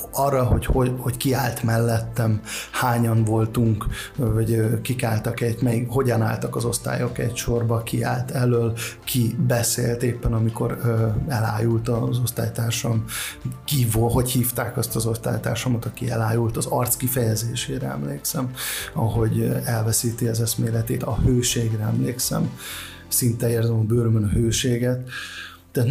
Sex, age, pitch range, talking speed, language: male, 30-49, 110-125 Hz, 125 wpm, Hungarian